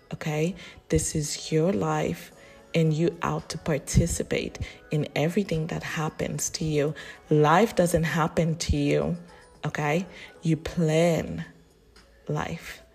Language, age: English, 30-49